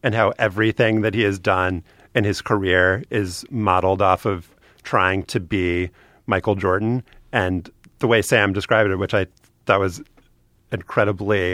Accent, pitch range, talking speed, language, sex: American, 95-110 Hz, 155 wpm, English, male